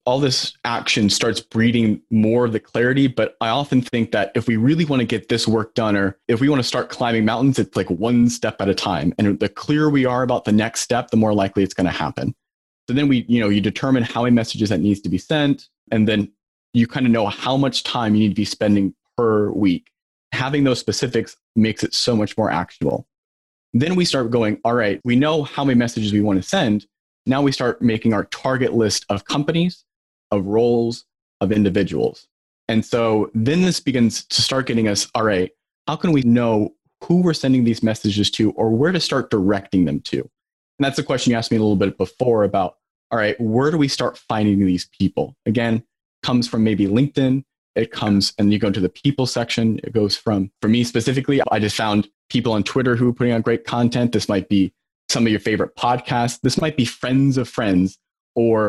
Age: 30-49